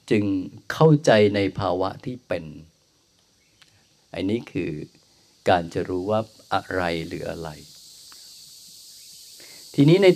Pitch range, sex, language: 95-135 Hz, male, Thai